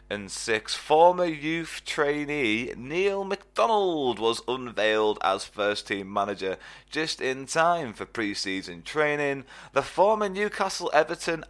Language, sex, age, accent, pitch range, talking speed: English, male, 30-49, British, 105-160 Hz, 120 wpm